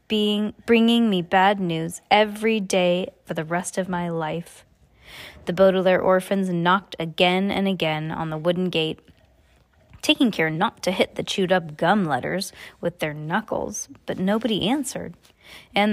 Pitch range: 175-220 Hz